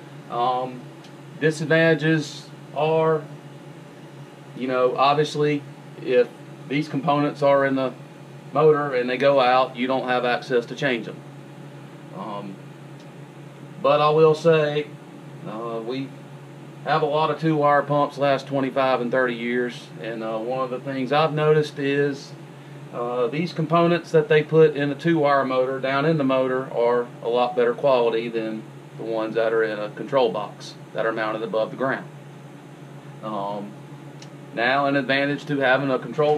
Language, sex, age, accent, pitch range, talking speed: English, male, 40-59, American, 125-150 Hz, 155 wpm